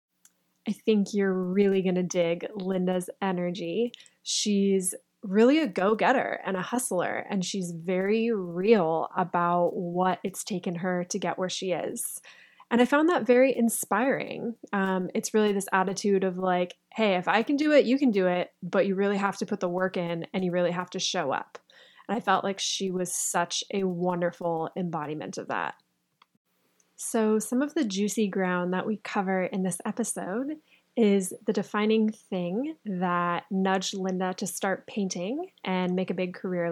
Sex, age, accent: female, 20-39, American